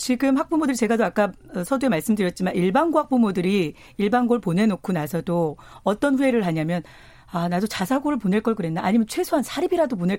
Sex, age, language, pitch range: female, 40-59, Korean, 180-255 Hz